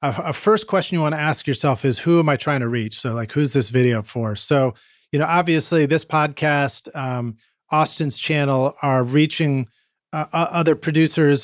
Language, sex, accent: English, male, American